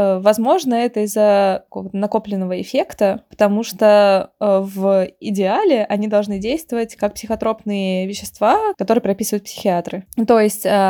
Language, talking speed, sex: Russian, 110 wpm, female